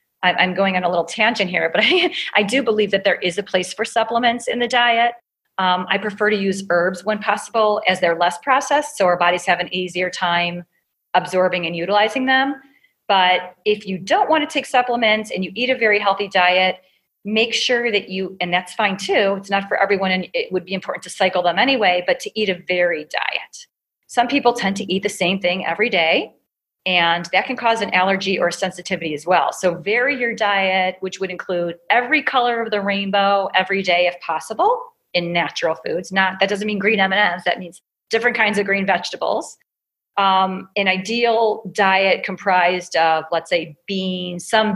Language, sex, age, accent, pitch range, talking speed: English, female, 40-59, American, 180-225 Hz, 200 wpm